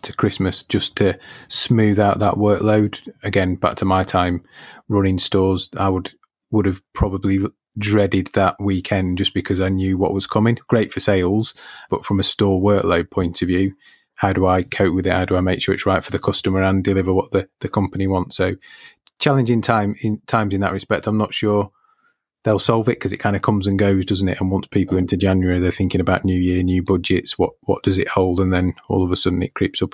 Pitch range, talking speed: 95-105 Hz, 225 wpm